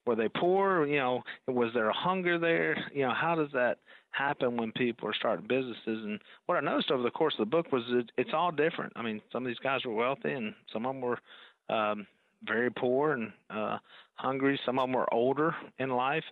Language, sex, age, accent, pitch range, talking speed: English, male, 40-59, American, 110-130 Hz, 225 wpm